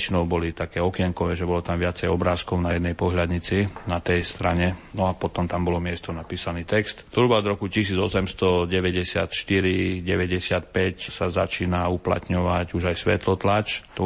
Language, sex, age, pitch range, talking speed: Slovak, male, 40-59, 85-95 Hz, 140 wpm